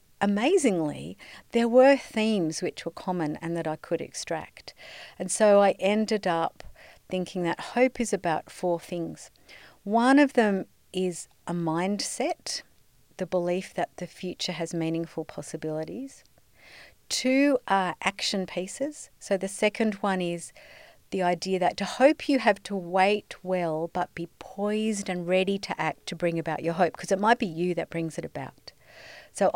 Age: 50-69